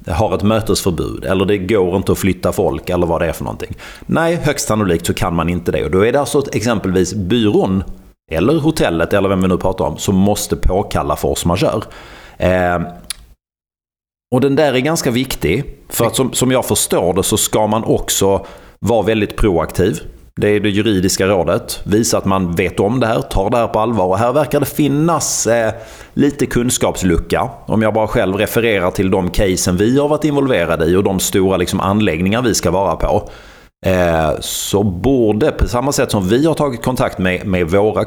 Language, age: Swedish, 30-49